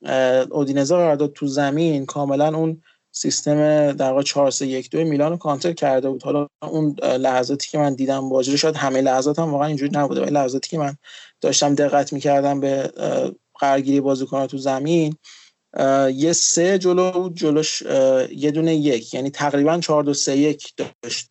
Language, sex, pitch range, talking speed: Persian, male, 140-160 Hz, 140 wpm